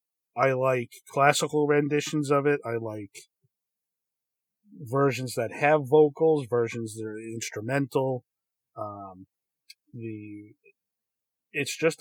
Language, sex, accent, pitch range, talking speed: English, male, American, 115-145 Hz, 100 wpm